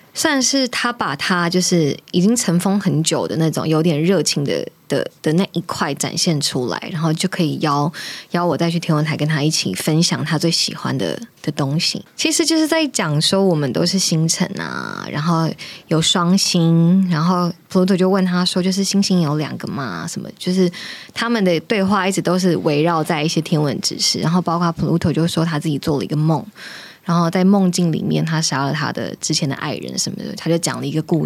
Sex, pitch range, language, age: female, 160-195 Hz, Chinese, 20-39